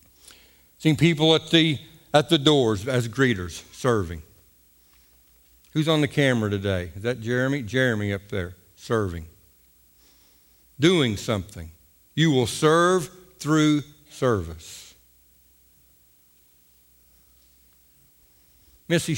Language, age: English, 60-79